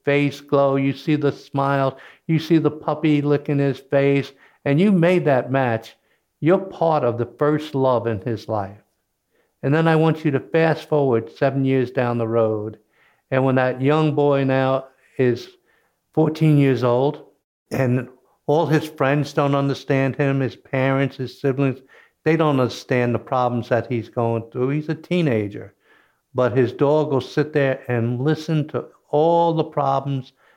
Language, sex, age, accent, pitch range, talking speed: English, male, 60-79, American, 120-145 Hz, 165 wpm